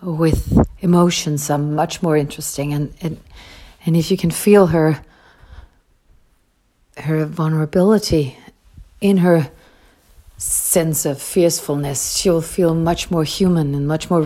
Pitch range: 140-165 Hz